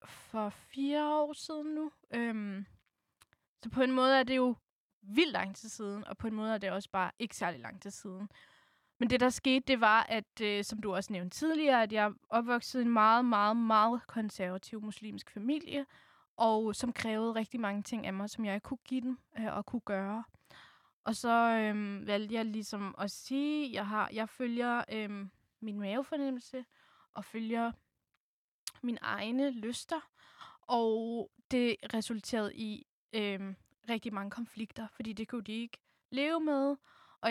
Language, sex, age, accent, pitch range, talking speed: Danish, female, 10-29, native, 205-245 Hz, 170 wpm